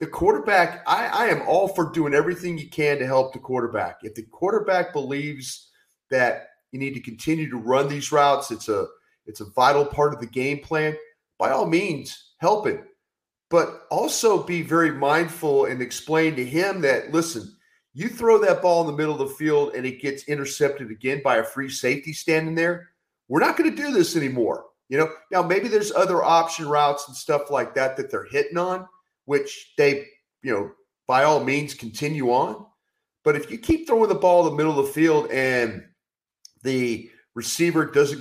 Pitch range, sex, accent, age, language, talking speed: 140-220 Hz, male, American, 40-59, English, 195 wpm